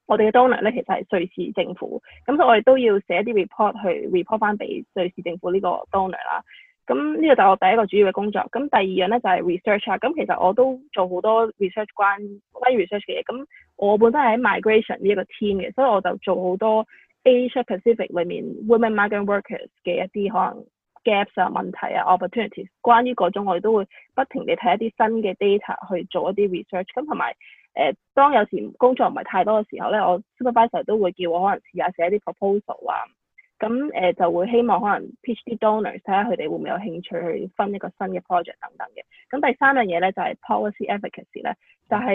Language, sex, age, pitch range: Chinese, female, 20-39, 185-240 Hz